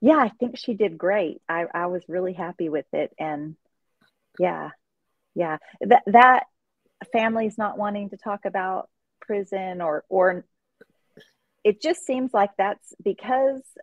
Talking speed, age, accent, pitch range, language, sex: 145 wpm, 30-49, American, 175-210 Hz, English, female